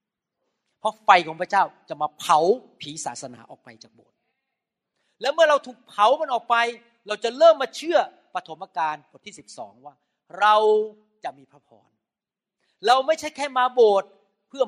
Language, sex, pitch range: Thai, male, 185-290 Hz